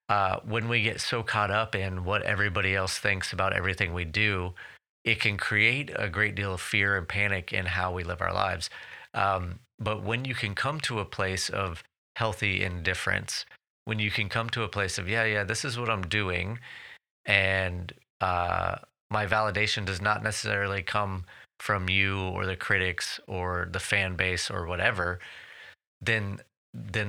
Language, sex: English, male